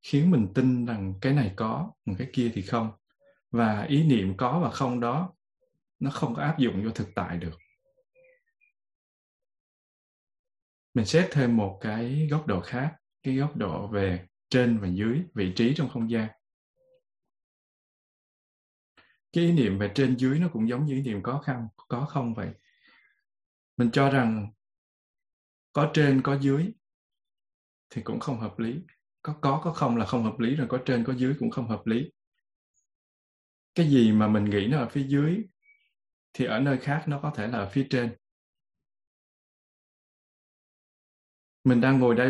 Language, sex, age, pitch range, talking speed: Vietnamese, male, 20-39, 110-150 Hz, 165 wpm